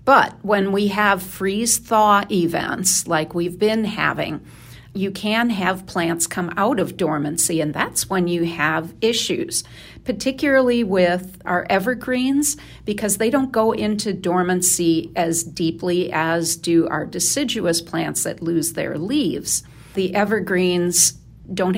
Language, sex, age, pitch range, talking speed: English, female, 50-69, 170-205 Hz, 130 wpm